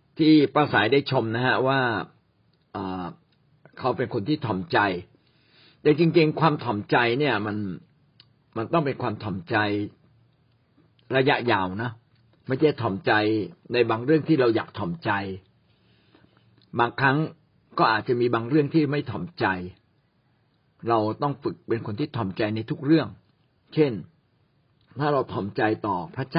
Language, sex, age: Thai, male, 60-79